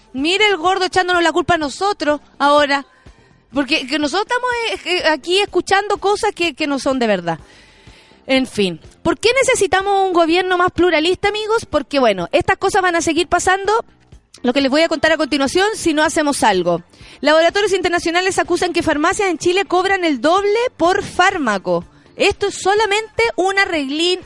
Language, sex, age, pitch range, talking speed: Spanish, female, 30-49, 255-365 Hz, 170 wpm